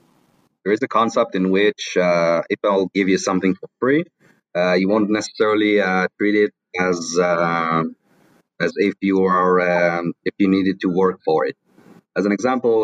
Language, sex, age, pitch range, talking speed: English, male, 30-49, 90-110 Hz, 180 wpm